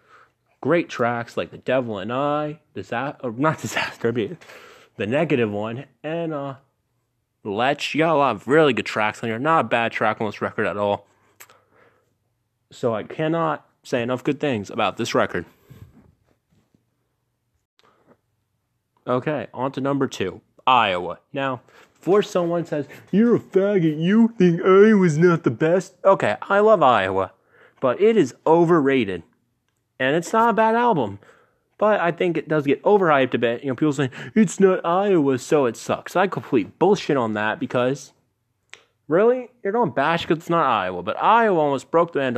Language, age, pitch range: English, 30-49, 120-170 Hz